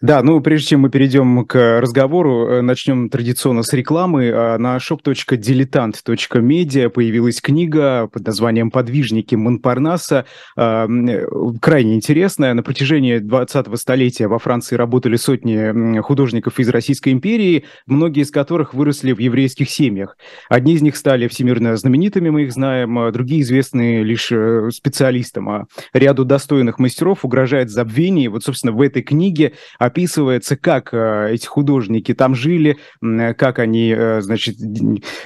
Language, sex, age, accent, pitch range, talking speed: Russian, male, 20-39, native, 115-145 Hz, 125 wpm